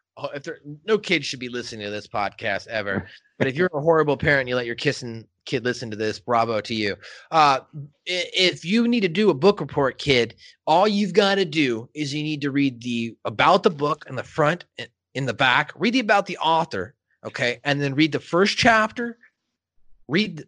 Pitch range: 125-185 Hz